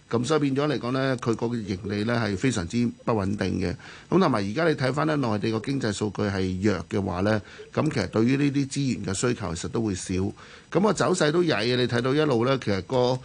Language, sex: Chinese, male